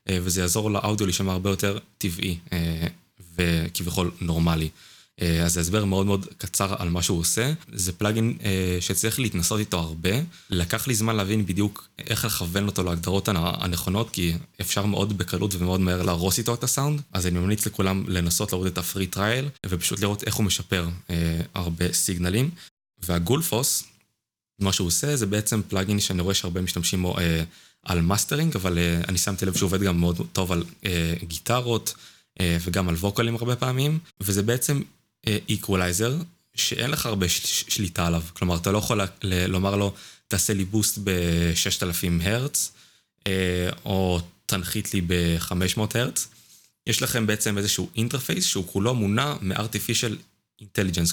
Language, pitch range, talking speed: Hebrew, 90-110 Hz, 155 wpm